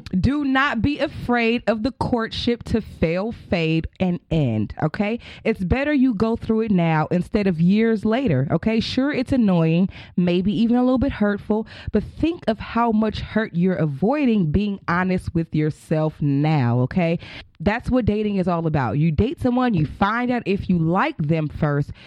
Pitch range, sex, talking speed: 170-230 Hz, female, 175 wpm